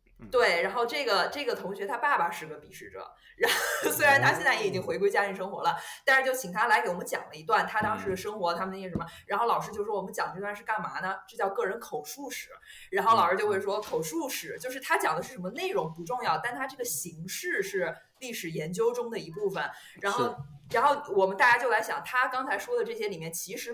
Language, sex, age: Chinese, female, 20-39